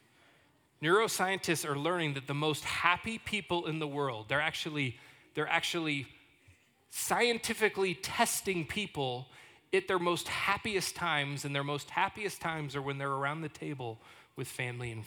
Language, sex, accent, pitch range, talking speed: English, male, American, 130-170 Hz, 145 wpm